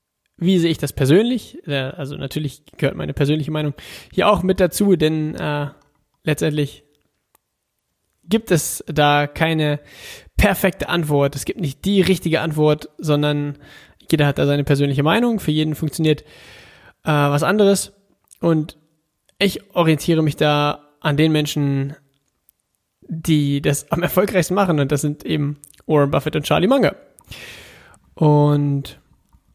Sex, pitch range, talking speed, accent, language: male, 145-175 Hz, 135 wpm, German, German